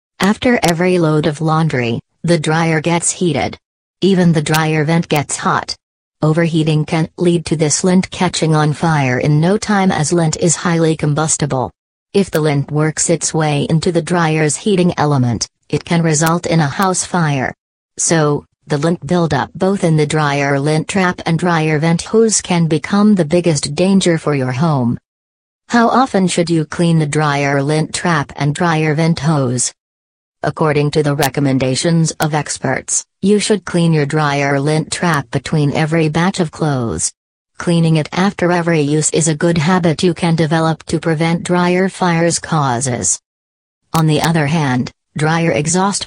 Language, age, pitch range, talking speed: English, 40-59, 150-175 Hz, 165 wpm